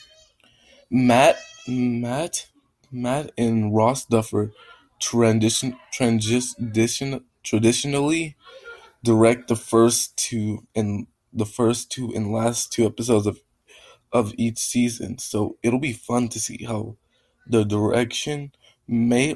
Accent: American